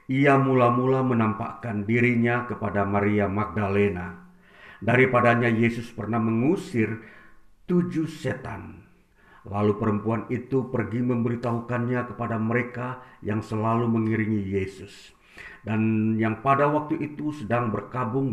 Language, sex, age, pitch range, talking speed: Indonesian, male, 50-69, 105-125 Hz, 100 wpm